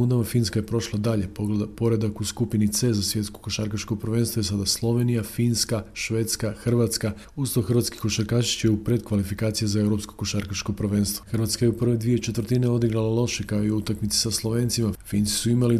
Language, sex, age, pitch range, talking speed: Croatian, male, 40-59, 105-115 Hz, 165 wpm